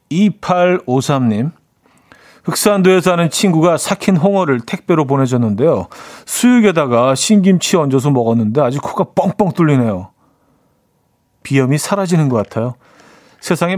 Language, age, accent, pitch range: Korean, 40-59, native, 120-170 Hz